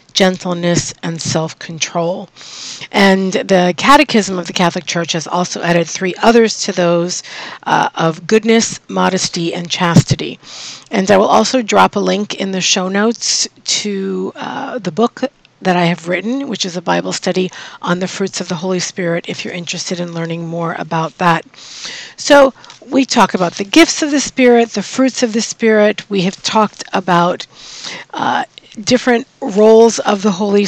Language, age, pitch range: English, 50-69, 175-230 Hz